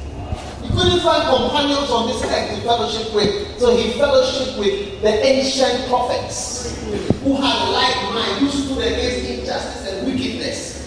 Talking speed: 145 wpm